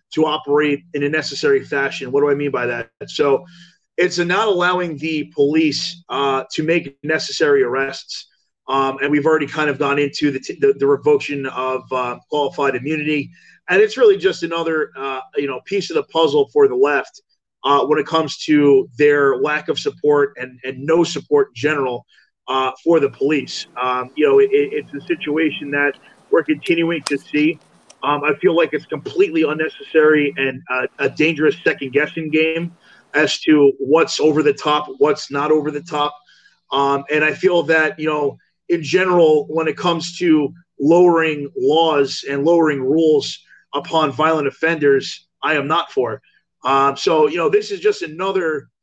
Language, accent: English, American